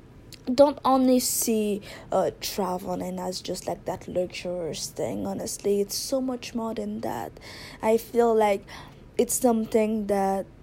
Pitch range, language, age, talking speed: 210-265 Hz, English, 20-39, 135 wpm